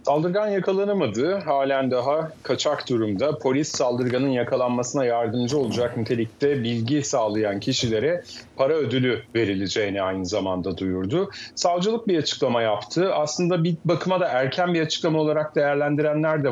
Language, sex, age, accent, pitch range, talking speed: Turkish, male, 40-59, native, 115-155 Hz, 125 wpm